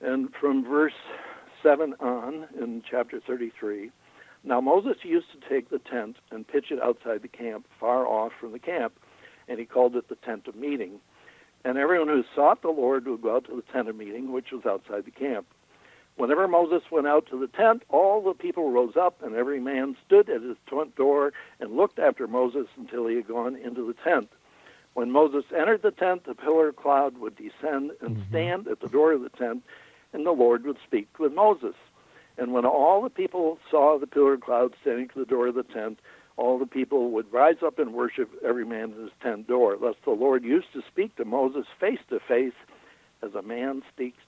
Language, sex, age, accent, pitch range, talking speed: English, male, 60-79, American, 125-185 Hz, 215 wpm